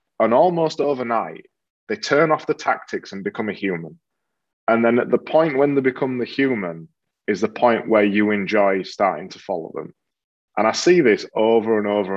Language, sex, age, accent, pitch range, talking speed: English, male, 20-39, British, 105-140 Hz, 190 wpm